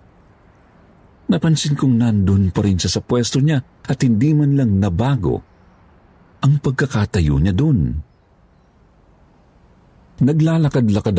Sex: male